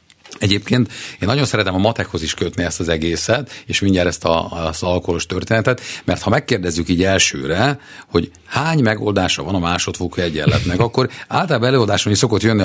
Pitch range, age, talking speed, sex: 90-120 Hz, 50-69, 170 wpm, male